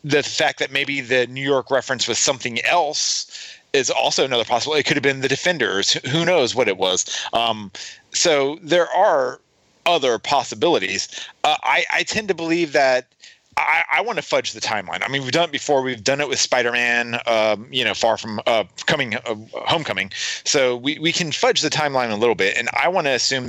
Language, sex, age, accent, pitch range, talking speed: English, male, 30-49, American, 125-165 Hz, 205 wpm